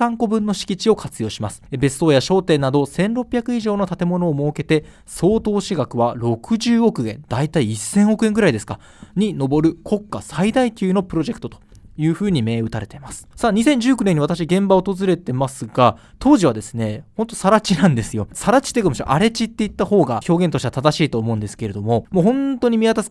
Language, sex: Japanese, male